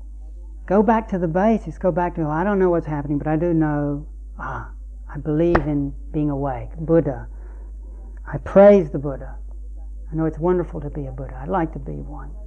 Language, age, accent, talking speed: English, 40-59, American, 195 wpm